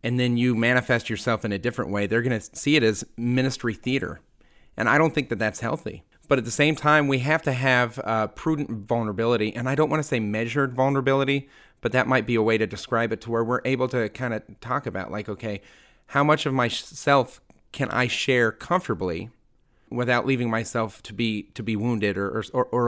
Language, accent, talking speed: English, American, 220 wpm